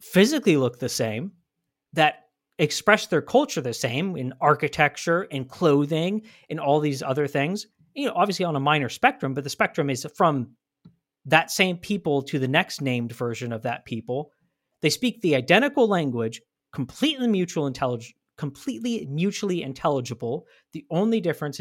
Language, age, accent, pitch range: English, 40-59, American, 130-175 Hz